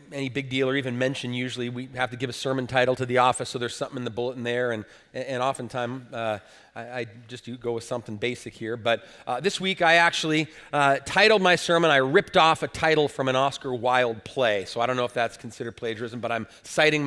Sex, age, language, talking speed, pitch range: male, 30-49, English, 240 wpm, 125-185 Hz